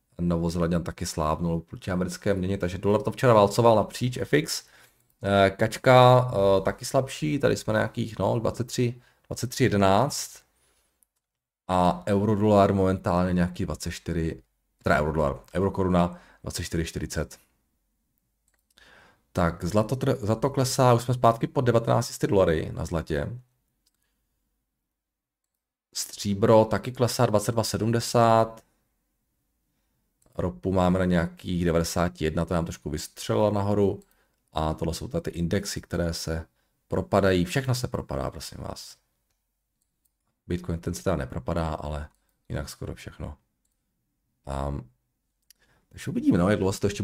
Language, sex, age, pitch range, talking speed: Czech, male, 40-59, 85-115 Hz, 115 wpm